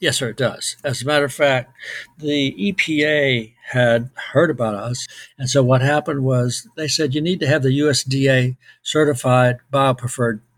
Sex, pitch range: male, 125-150 Hz